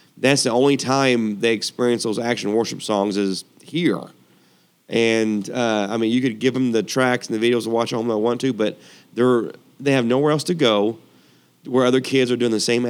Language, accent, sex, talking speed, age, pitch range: English, American, male, 225 wpm, 30-49, 110-125 Hz